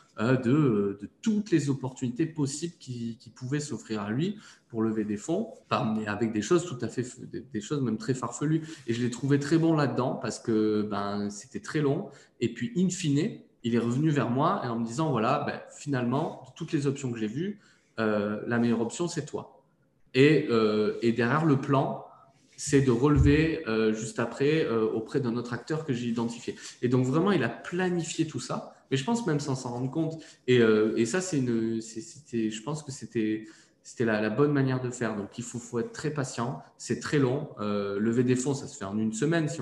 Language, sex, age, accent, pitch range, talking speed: French, male, 20-39, French, 110-145 Hz, 225 wpm